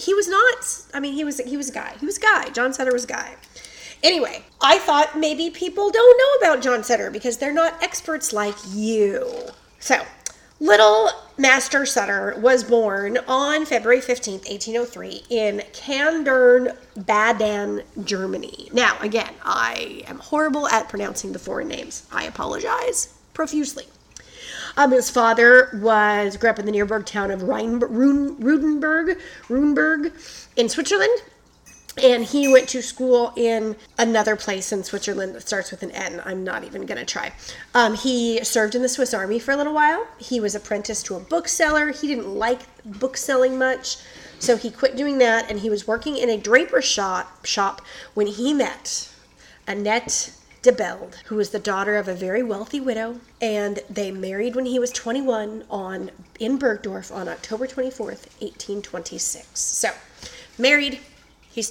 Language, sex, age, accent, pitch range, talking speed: English, female, 30-49, American, 215-280 Hz, 160 wpm